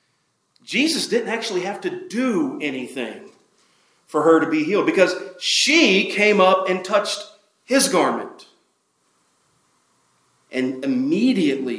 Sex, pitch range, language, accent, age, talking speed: male, 150-230 Hz, English, American, 40-59, 110 wpm